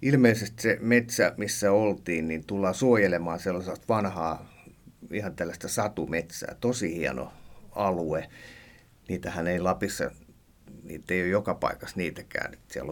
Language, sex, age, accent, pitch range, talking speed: Finnish, male, 50-69, native, 90-115 Hz, 120 wpm